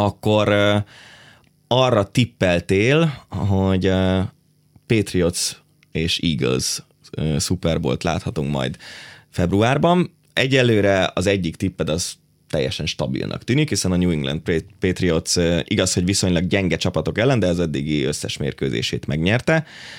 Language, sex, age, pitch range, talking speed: Hungarian, male, 20-39, 85-105 Hz, 120 wpm